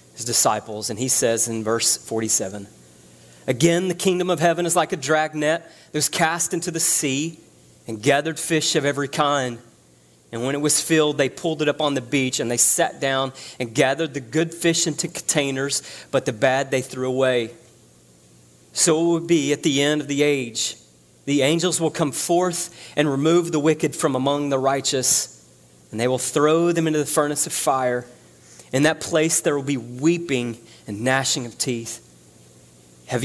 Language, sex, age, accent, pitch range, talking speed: English, male, 30-49, American, 115-155 Hz, 185 wpm